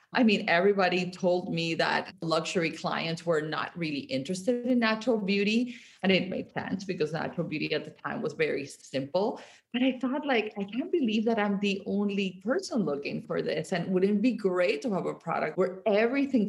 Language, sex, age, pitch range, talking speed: English, female, 30-49, 165-210 Hz, 195 wpm